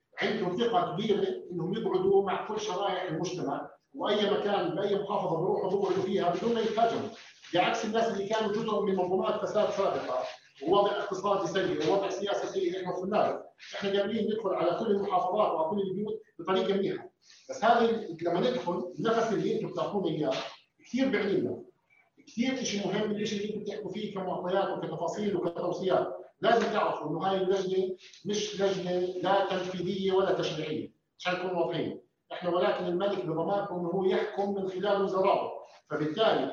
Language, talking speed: Arabic, 160 wpm